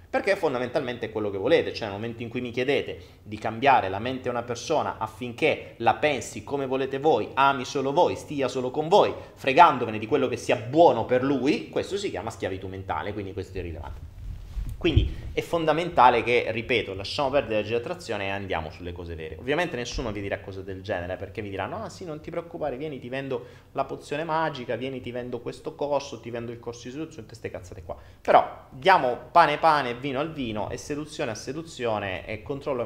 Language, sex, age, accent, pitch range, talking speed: Italian, male, 30-49, native, 100-150 Hz, 210 wpm